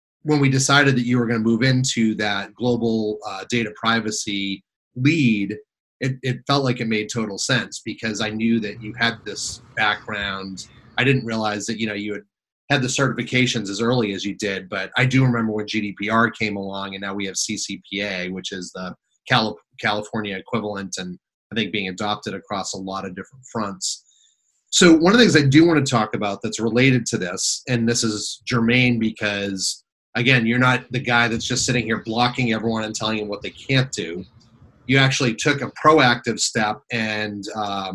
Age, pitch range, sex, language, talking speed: 30-49, 105-125 Hz, male, English, 195 wpm